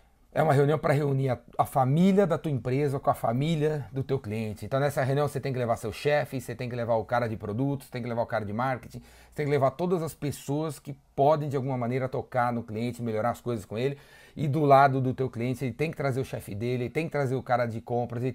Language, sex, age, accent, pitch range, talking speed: Portuguese, male, 30-49, Brazilian, 125-145 Hz, 270 wpm